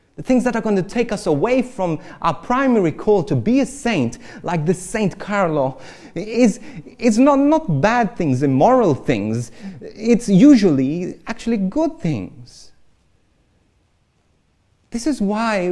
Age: 30-49